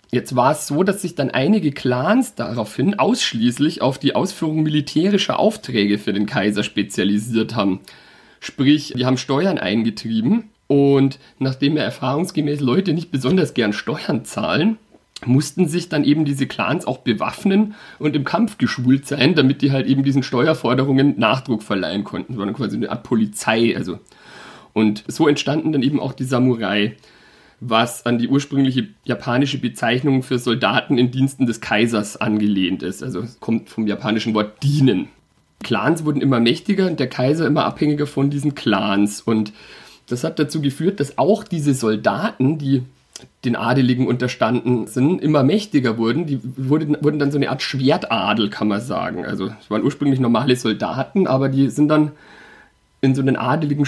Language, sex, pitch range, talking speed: German, male, 120-150 Hz, 165 wpm